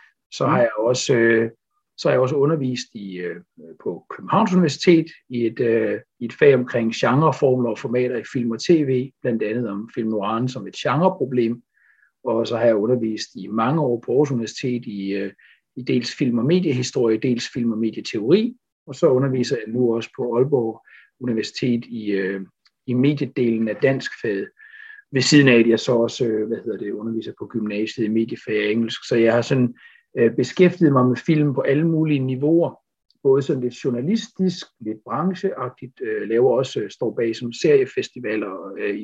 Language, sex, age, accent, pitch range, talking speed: English, male, 60-79, Danish, 115-145 Hz, 180 wpm